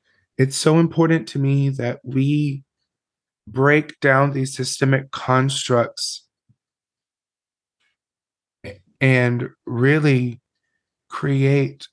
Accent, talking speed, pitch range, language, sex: American, 75 wpm, 125-145 Hz, English, male